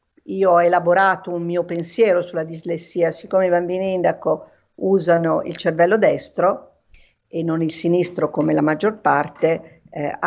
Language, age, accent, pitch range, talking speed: Italian, 50-69, native, 170-200 Hz, 145 wpm